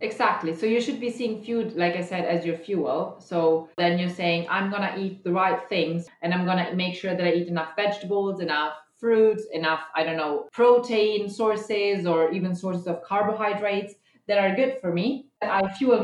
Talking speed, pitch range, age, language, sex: 205 wpm, 170-215 Hz, 30-49, English, female